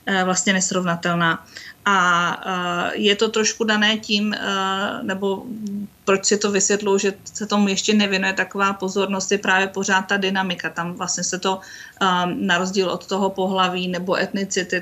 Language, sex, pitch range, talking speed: Czech, female, 175-195 Hz, 150 wpm